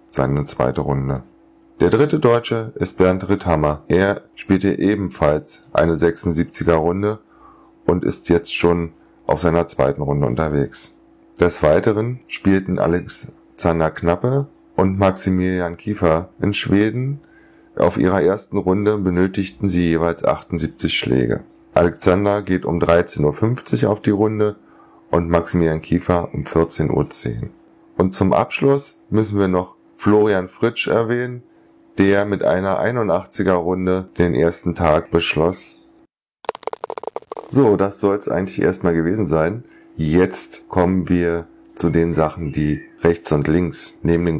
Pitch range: 85-105 Hz